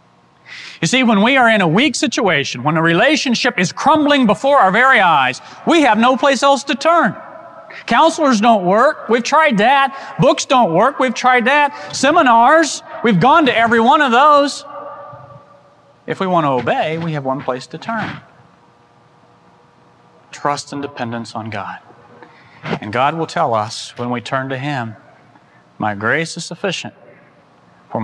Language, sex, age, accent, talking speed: English, male, 40-59, American, 165 wpm